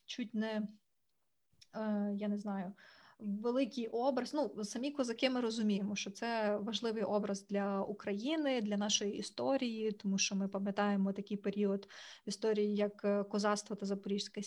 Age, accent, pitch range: 20-39, native, 205-235 Hz